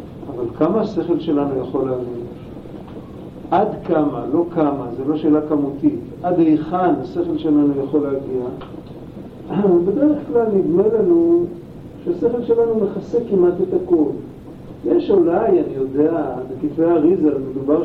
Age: 50-69